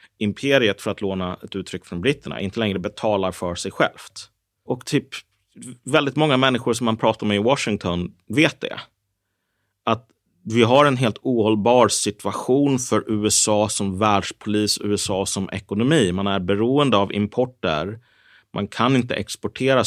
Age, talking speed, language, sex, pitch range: 30-49, 150 wpm, Swedish, male, 100-120 Hz